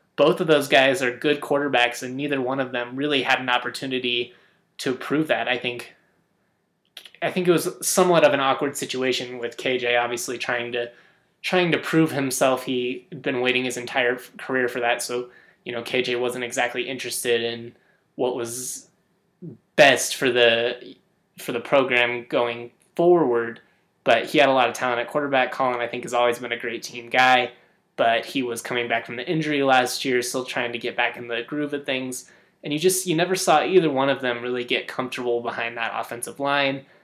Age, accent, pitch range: 20-39, American, 120-140 Hz